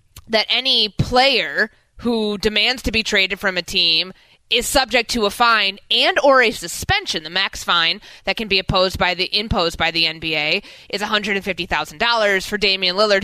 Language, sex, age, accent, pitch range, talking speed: English, female, 20-39, American, 180-240 Hz, 170 wpm